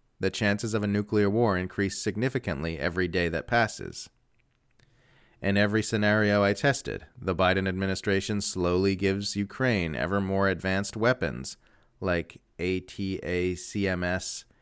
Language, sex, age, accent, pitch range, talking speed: English, male, 30-49, American, 90-110 Hz, 120 wpm